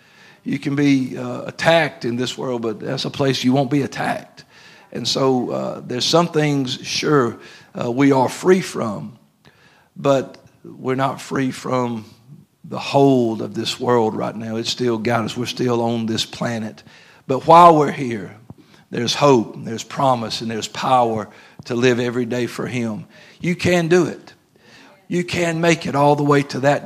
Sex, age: male, 50-69